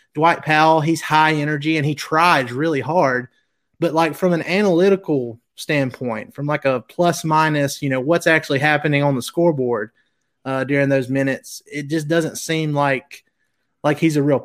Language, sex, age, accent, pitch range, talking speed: English, male, 30-49, American, 135-160 Hz, 170 wpm